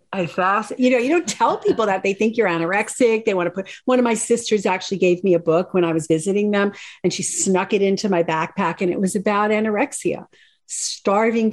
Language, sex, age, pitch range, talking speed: English, female, 50-69, 185-245 Hz, 230 wpm